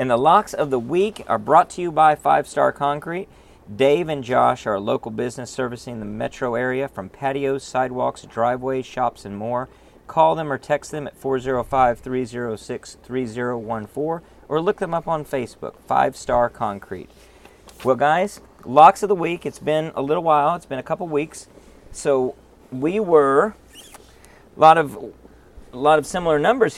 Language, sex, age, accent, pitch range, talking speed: English, male, 40-59, American, 120-150 Hz, 165 wpm